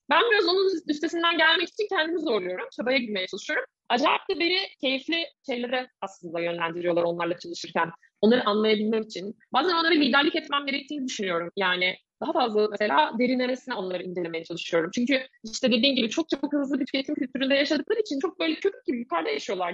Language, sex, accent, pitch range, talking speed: Turkish, female, native, 225-310 Hz, 165 wpm